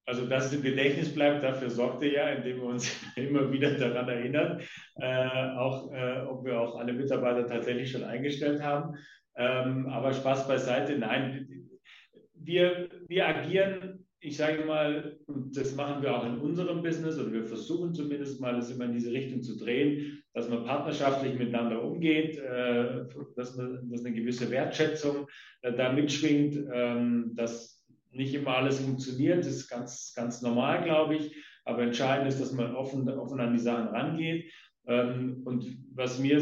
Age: 40-59